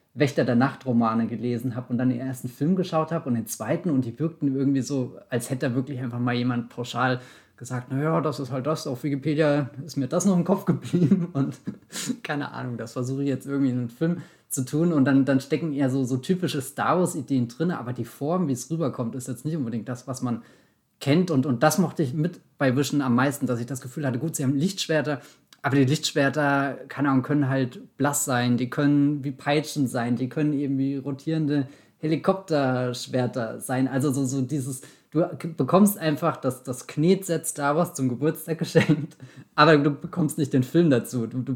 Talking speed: 205 wpm